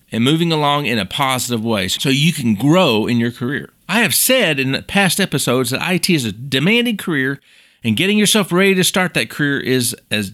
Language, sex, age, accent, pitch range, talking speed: English, male, 40-59, American, 120-180 Hz, 210 wpm